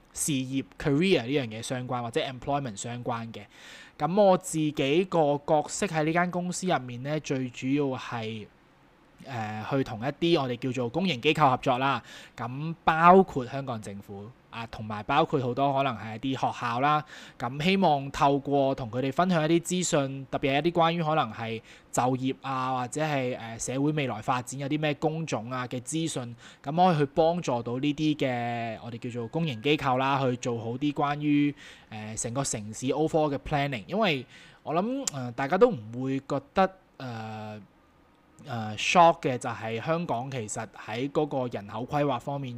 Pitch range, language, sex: 120-155 Hz, Chinese, male